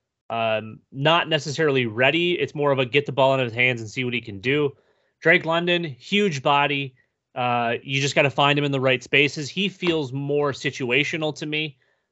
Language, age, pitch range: English, 30-49, 125-150 Hz